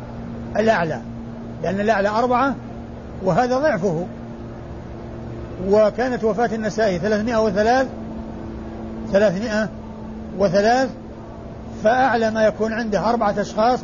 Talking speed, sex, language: 80 wpm, male, Arabic